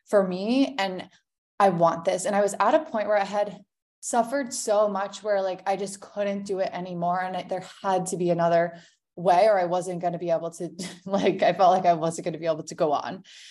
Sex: female